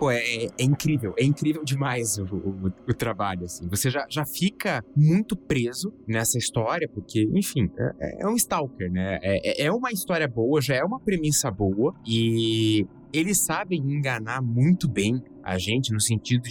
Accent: Brazilian